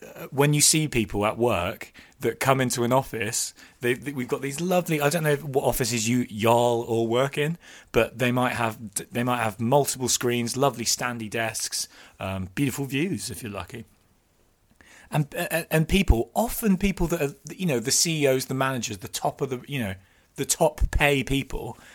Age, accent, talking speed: 30-49, British, 180 wpm